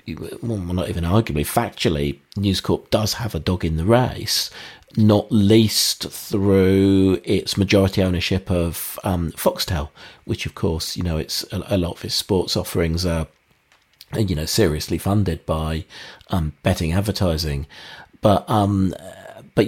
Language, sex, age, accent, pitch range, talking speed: English, male, 40-59, British, 85-110 Hz, 145 wpm